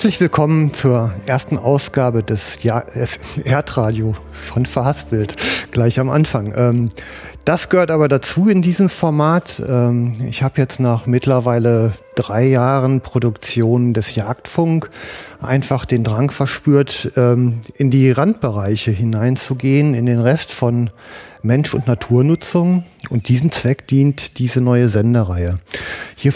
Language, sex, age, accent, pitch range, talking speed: German, male, 40-59, German, 115-140 Hz, 120 wpm